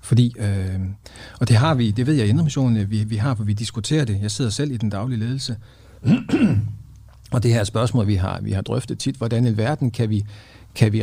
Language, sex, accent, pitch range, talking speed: Danish, male, native, 105-130 Hz, 200 wpm